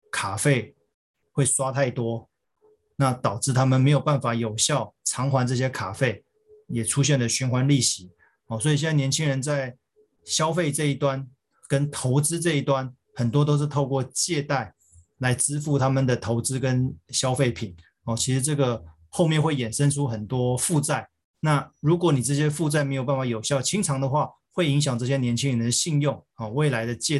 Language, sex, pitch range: Chinese, male, 120-150 Hz